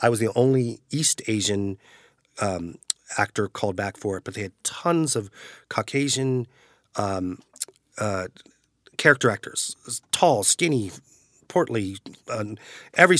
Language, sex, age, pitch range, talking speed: English, male, 30-49, 95-120 Hz, 125 wpm